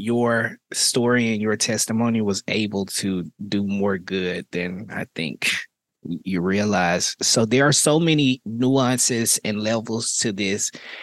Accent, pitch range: American, 105-120 Hz